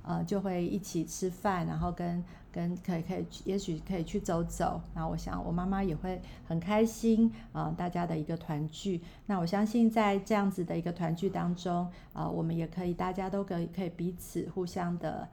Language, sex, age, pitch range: Chinese, female, 50-69, 170-205 Hz